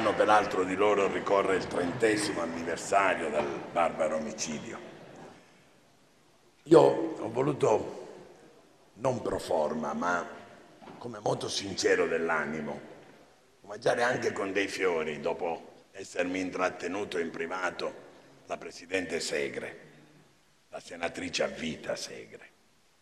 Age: 60-79